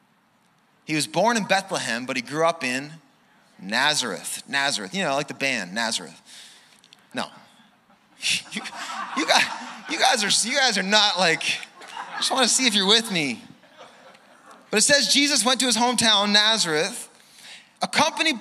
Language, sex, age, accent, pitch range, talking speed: English, male, 30-49, American, 195-255 Hz, 150 wpm